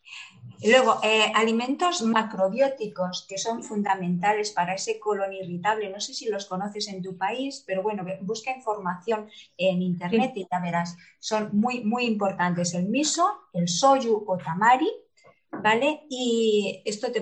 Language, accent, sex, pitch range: Spanish, Spanish, female, 185-230 Hz